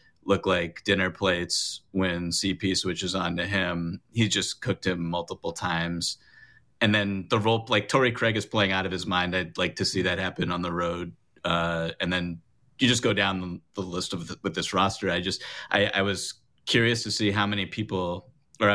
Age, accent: 30-49, American